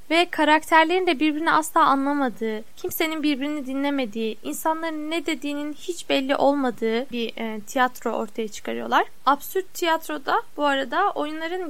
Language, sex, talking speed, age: Turkish, female, 130 wpm, 10-29